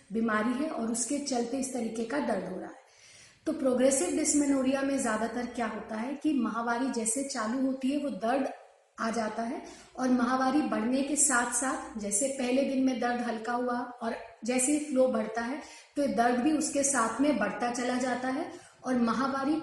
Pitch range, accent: 230-270 Hz, native